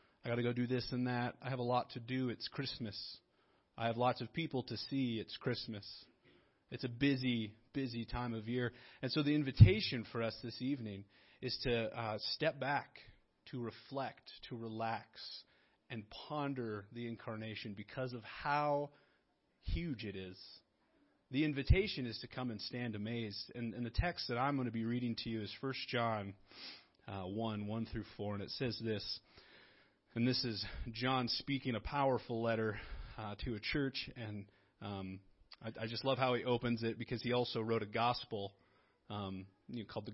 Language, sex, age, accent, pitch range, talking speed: English, male, 30-49, American, 110-130 Hz, 185 wpm